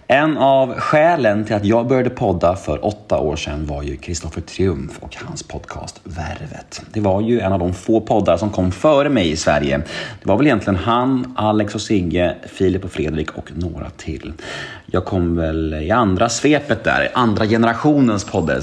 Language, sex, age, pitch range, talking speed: Swedish, male, 30-49, 85-120 Hz, 185 wpm